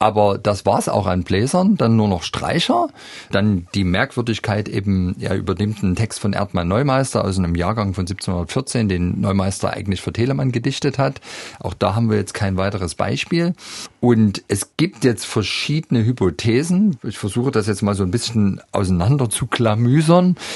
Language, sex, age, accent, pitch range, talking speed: German, male, 40-59, German, 95-125 Hz, 170 wpm